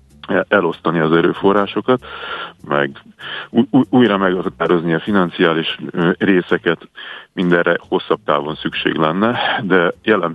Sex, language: male, Hungarian